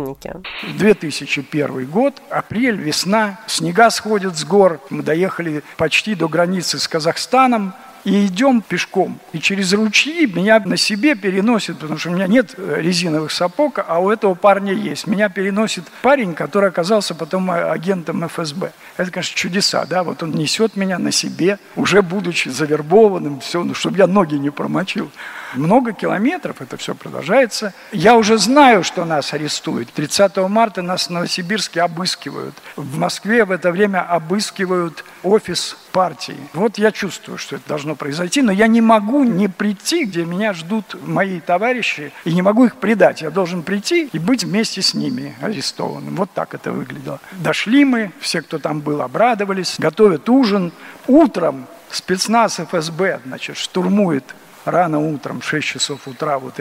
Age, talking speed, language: 60-79, 155 wpm, Russian